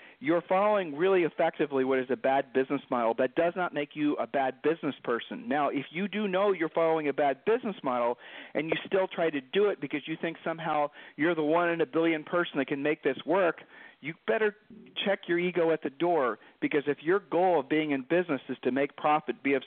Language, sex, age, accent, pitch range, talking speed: English, male, 40-59, American, 130-170 Hz, 230 wpm